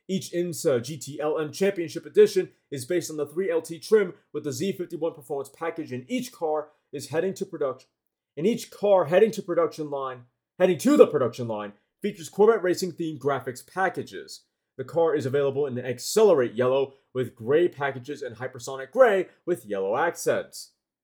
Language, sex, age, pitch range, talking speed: English, male, 30-49, 145-200 Hz, 170 wpm